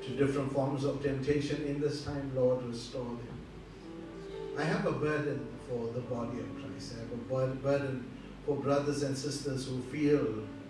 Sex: male